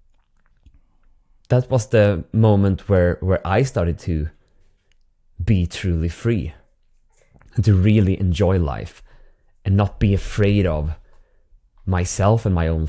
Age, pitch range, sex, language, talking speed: 20-39, 85-110 Hz, male, English, 120 wpm